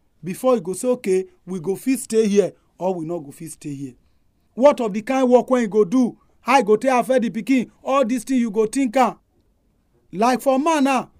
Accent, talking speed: Nigerian, 235 wpm